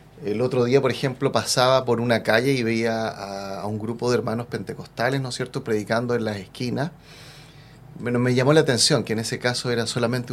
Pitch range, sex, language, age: 115-150 Hz, male, Spanish, 30-49